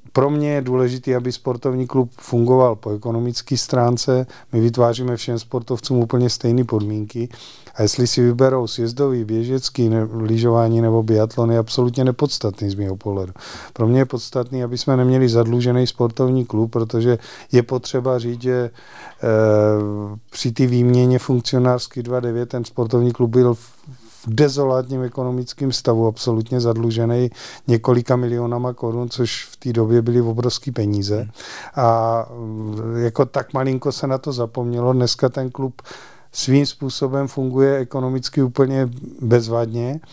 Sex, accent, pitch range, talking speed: male, native, 120-135 Hz, 140 wpm